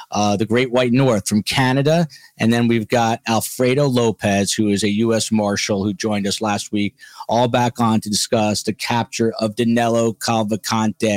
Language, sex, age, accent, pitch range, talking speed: English, male, 40-59, American, 115-135 Hz, 175 wpm